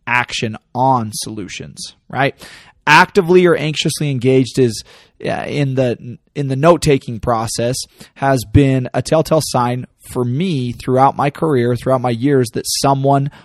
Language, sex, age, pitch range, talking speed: English, male, 20-39, 120-145 Hz, 135 wpm